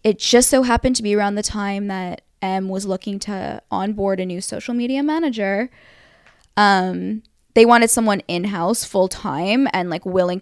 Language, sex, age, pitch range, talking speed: English, female, 10-29, 190-245 Hz, 175 wpm